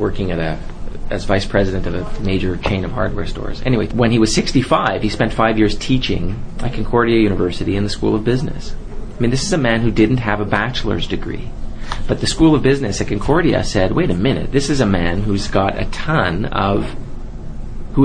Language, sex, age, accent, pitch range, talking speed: English, male, 40-59, American, 100-125 Hz, 215 wpm